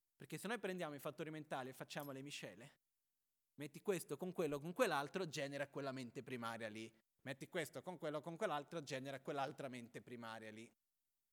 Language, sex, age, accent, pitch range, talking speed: Italian, male, 30-49, native, 125-160 Hz, 175 wpm